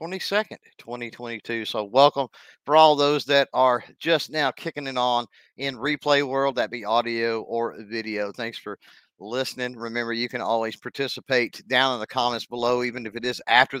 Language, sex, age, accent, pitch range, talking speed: English, male, 50-69, American, 115-140 Hz, 175 wpm